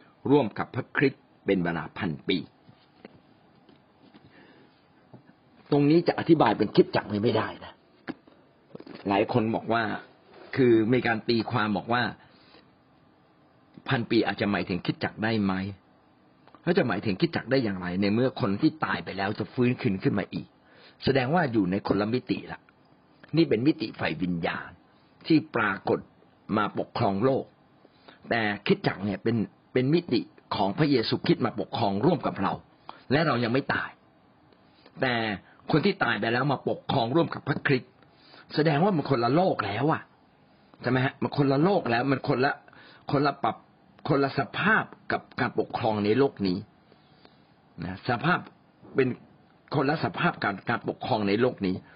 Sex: male